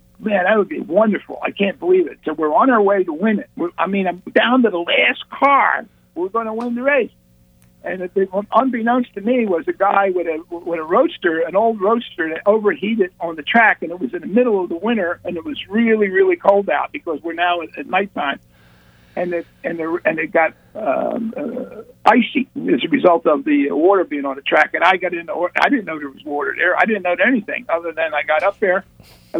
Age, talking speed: 60-79, 235 wpm